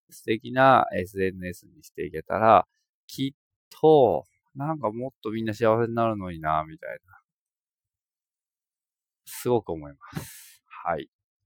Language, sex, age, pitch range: Japanese, male, 20-39, 90-135 Hz